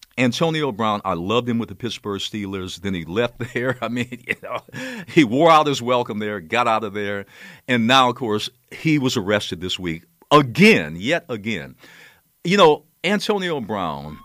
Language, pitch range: English, 95-150 Hz